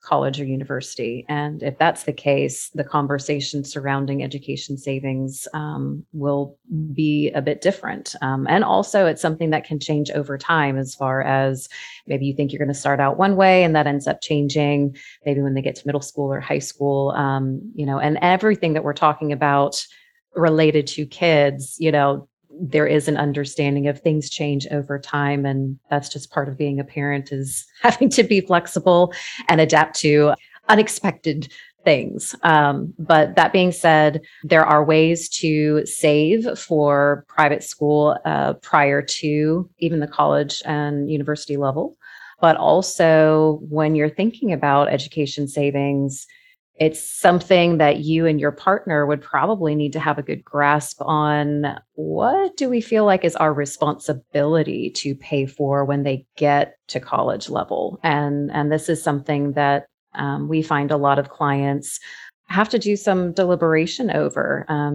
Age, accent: 30-49, American